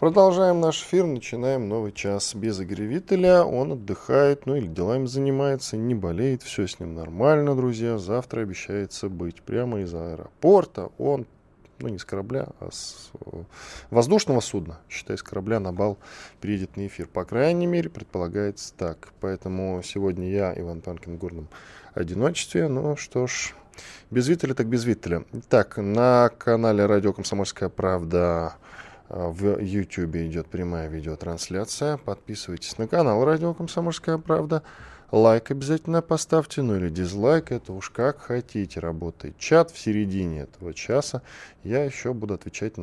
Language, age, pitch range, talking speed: Russian, 10-29, 90-130 Hz, 145 wpm